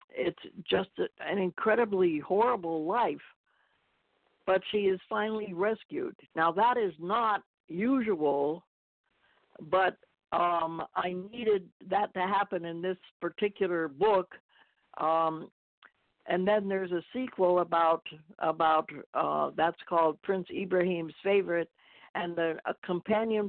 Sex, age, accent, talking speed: female, 60-79, American, 115 wpm